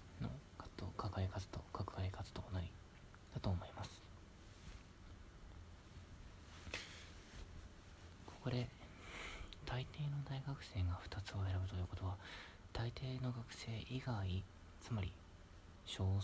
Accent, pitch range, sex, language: native, 90-105 Hz, male, Japanese